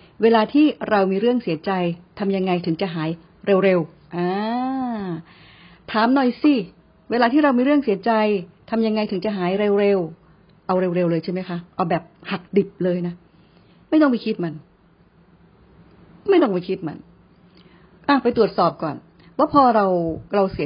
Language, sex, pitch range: Thai, female, 180-240 Hz